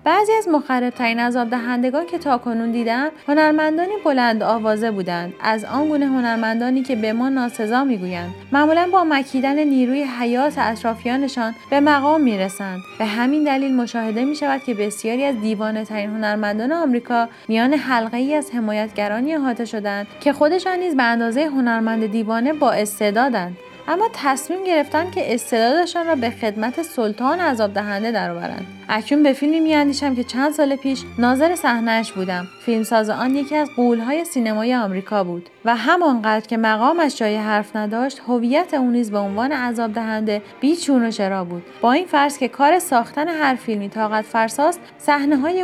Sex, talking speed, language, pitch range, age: female, 165 wpm, Persian, 220-285 Hz, 30-49